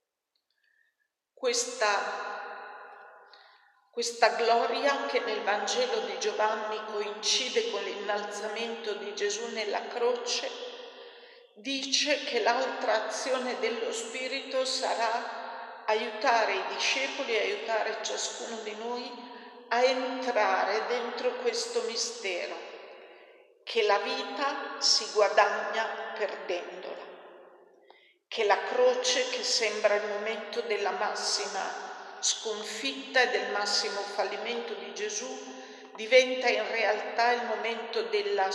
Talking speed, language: 95 wpm, Italian